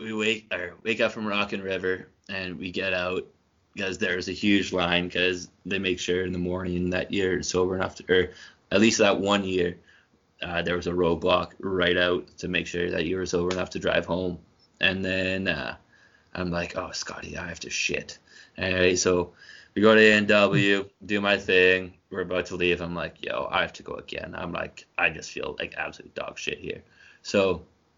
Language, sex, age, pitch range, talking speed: English, male, 20-39, 90-95 Hz, 210 wpm